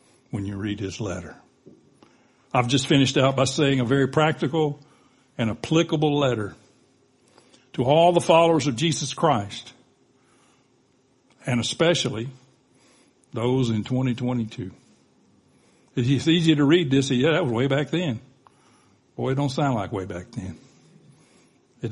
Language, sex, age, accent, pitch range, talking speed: English, male, 60-79, American, 125-155 Hz, 135 wpm